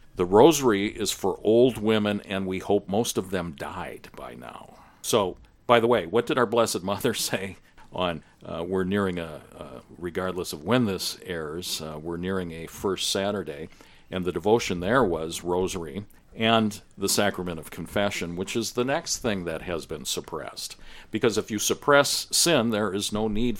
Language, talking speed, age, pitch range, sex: English, 180 wpm, 50-69, 90-105 Hz, male